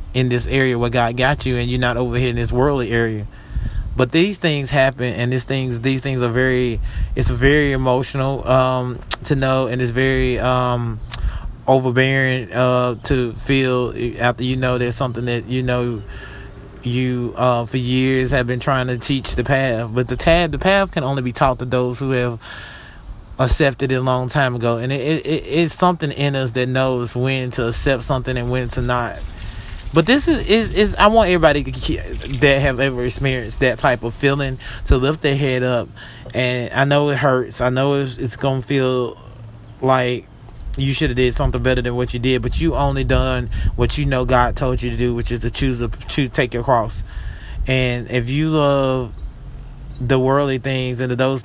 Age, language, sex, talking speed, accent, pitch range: 20-39, English, male, 200 wpm, American, 120-135 Hz